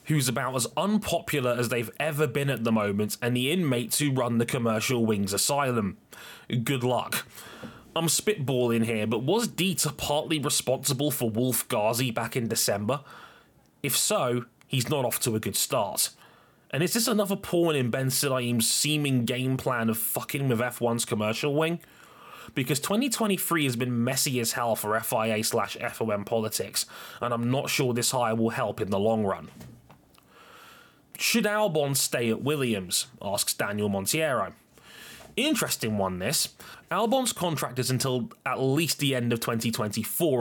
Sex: male